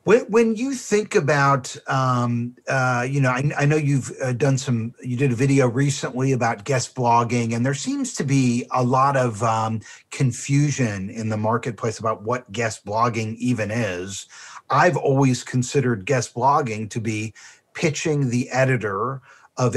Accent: American